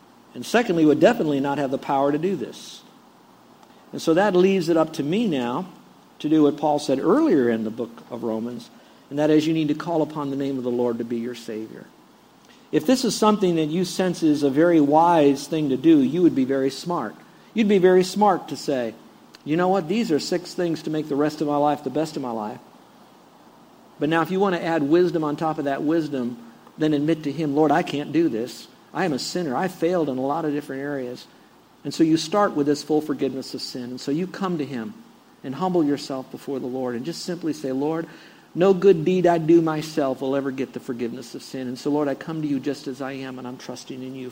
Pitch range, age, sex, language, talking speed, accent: 135-170 Hz, 50-69, male, English, 245 wpm, American